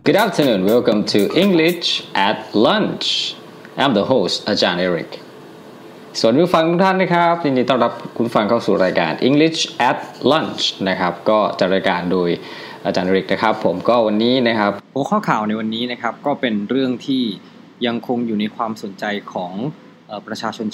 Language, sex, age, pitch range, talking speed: English, male, 20-39, 100-135 Hz, 50 wpm